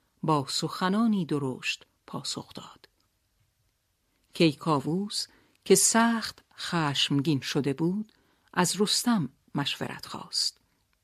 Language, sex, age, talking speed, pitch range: Persian, female, 50-69, 80 wpm, 145-205 Hz